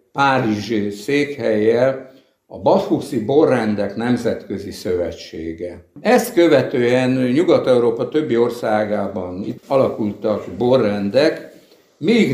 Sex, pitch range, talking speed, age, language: male, 110-135 Hz, 80 wpm, 60-79, Hungarian